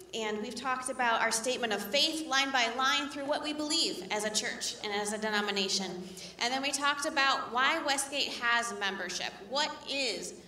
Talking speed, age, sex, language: 190 wpm, 30-49, female, English